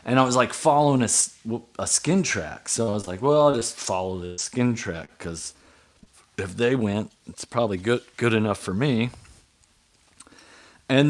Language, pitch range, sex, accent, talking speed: English, 100-130 Hz, male, American, 175 wpm